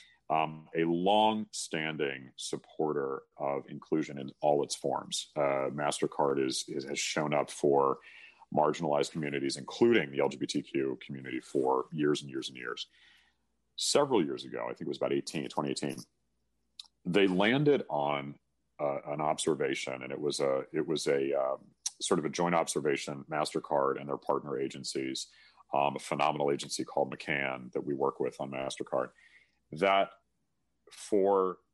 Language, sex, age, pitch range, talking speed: English, male, 40-59, 70-85 Hz, 140 wpm